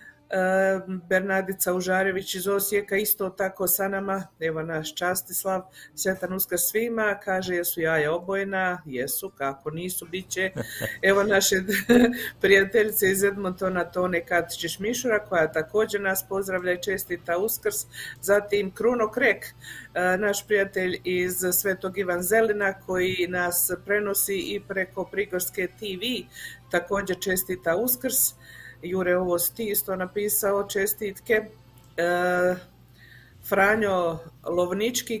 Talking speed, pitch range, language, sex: 110 wpm, 170-200 Hz, Croatian, female